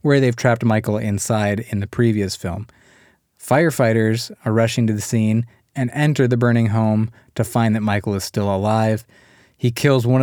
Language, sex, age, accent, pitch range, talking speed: English, male, 20-39, American, 100-125 Hz, 175 wpm